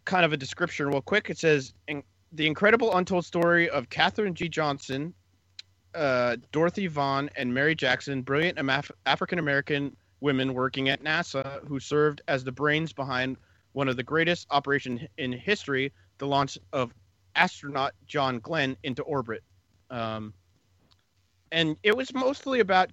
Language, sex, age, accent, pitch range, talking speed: English, male, 30-49, American, 115-165 Hz, 150 wpm